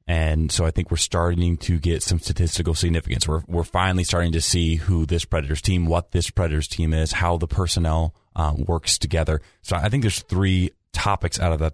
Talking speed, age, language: 210 wpm, 30-49, English